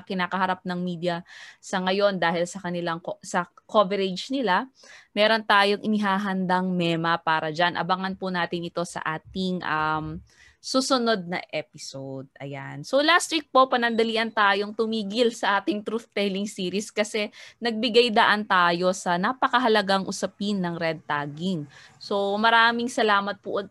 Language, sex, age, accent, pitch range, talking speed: Filipino, female, 20-39, native, 185-250 Hz, 135 wpm